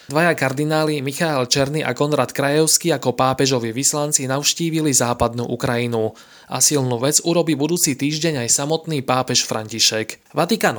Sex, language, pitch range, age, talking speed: male, Slovak, 125-155 Hz, 20-39, 135 wpm